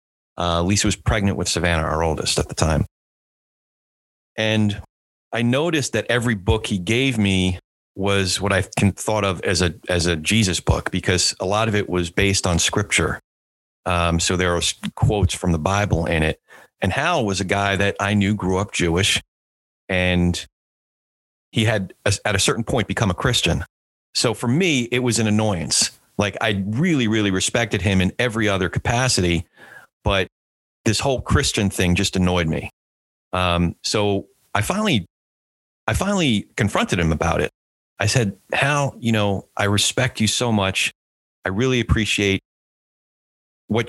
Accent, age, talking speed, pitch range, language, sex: American, 30-49, 165 wpm, 85-105 Hz, English, male